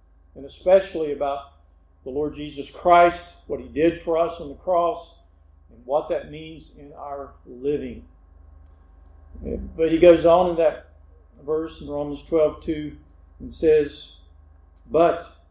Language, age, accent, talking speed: English, 50-69, American, 140 wpm